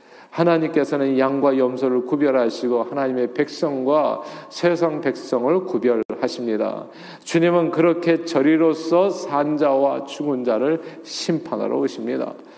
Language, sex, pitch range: Korean, male, 130-180 Hz